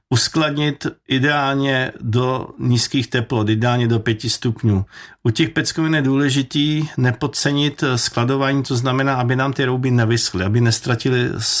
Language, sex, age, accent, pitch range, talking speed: Czech, male, 50-69, native, 110-130 Hz, 130 wpm